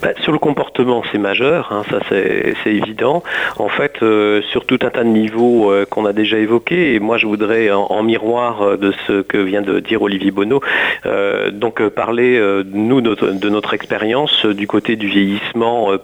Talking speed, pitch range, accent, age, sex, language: 215 wpm, 100-120 Hz, French, 40-59, male, French